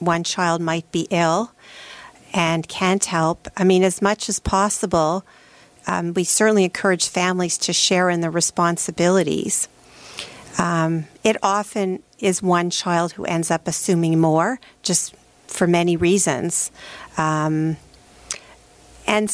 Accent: American